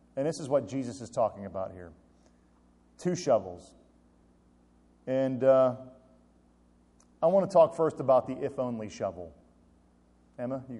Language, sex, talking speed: English, male, 135 wpm